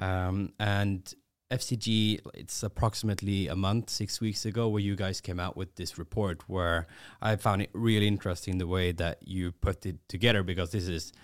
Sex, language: male, English